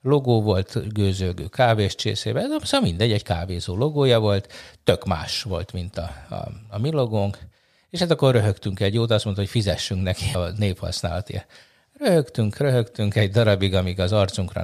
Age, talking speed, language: 50-69, 160 wpm, Hungarian